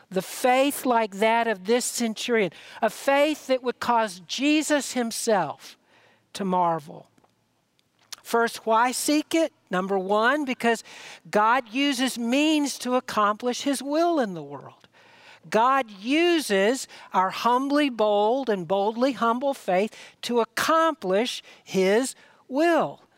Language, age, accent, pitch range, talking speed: English, 60-79, American, 205-275 Hz, 120 wpm